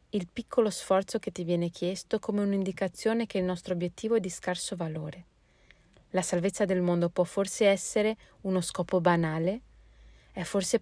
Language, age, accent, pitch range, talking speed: Italian, 30-49, native, 175-200 Hz, 160 wpm